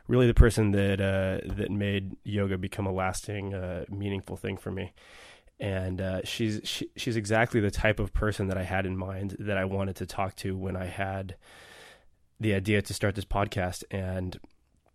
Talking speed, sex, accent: 185 wpm, male, American